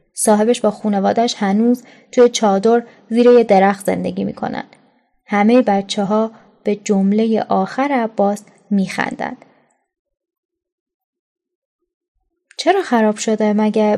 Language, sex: Persian, female